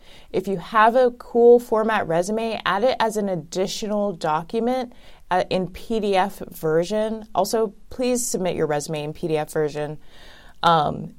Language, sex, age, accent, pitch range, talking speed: English, female, 20-39, American, 175-215 Hz, 140 wpm